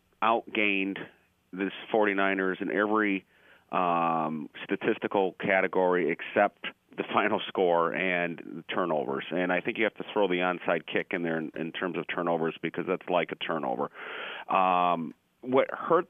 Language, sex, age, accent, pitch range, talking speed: English, male, 40-59, American, 85-100 Hz, 150 wpm